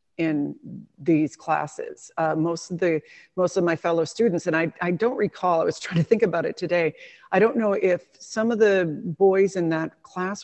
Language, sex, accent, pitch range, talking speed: English, female, American, 160-195 Hz, 205 wpm